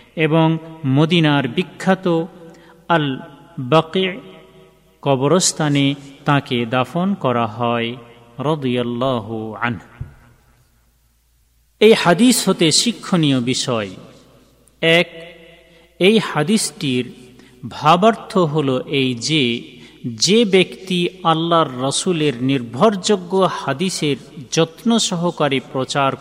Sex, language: male, Bengali